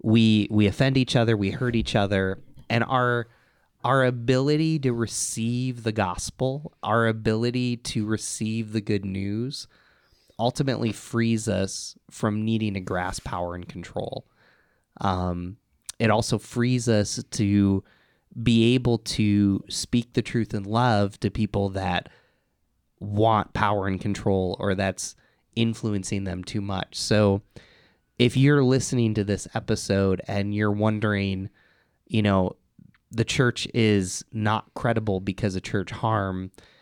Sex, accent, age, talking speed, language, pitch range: male, American, 20-39, 135 wpm, English, 95-115 Hz